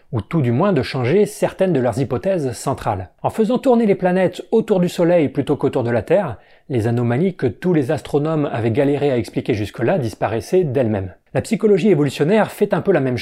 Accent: French